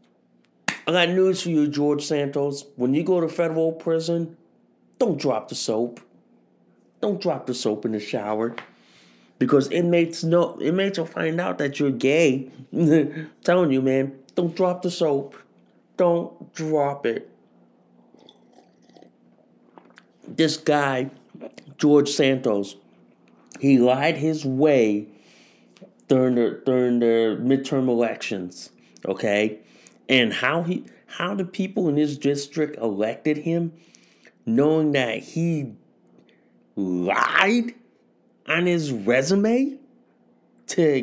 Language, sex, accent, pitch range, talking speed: English, male, American, 115-175 Hz, 115 wpm